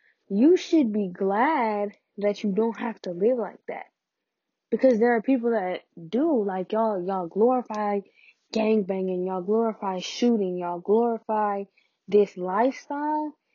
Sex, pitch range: female, 195-250 Hz